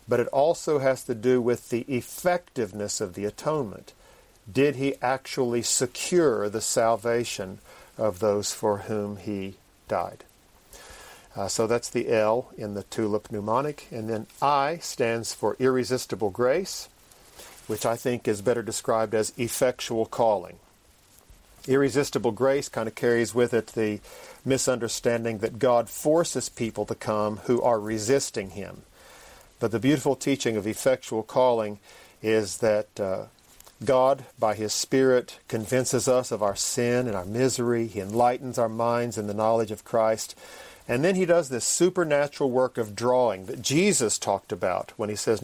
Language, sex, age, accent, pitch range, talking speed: English, male, 50-69, American, 110-130 Hz, 150 wpm